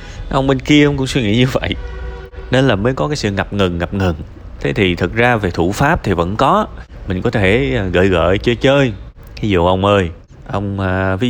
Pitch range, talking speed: 90-125 Hz, 225 wpm